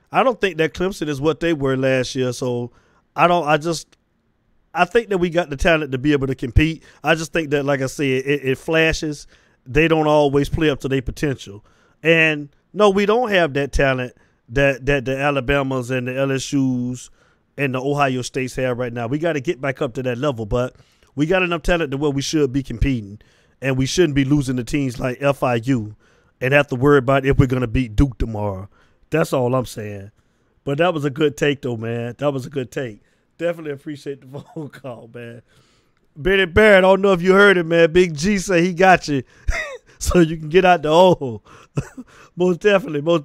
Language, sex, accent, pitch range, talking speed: English, male, American, 130-170 Hz, 220 wpm